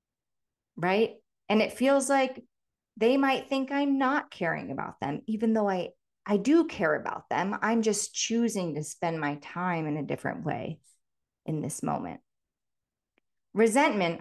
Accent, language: American, English